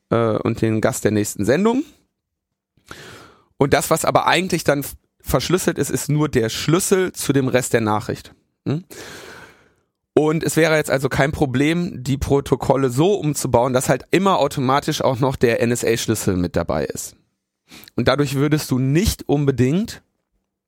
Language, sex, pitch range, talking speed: German, male, 115-150 Hz, 150 wpm